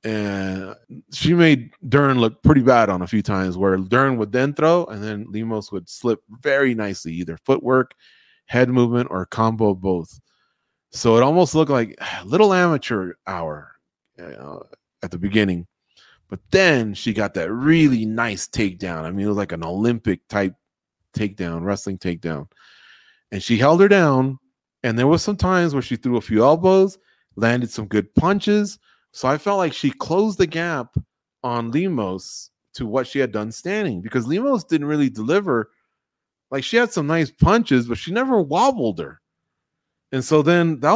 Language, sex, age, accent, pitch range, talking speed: English, male, 30-49, American, 110-165 Hz, 170 wpm